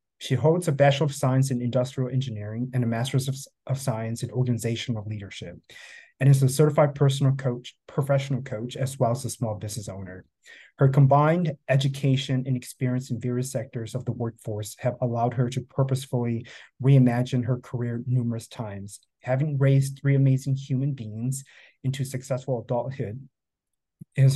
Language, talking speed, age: English, 160 wpm, 30-49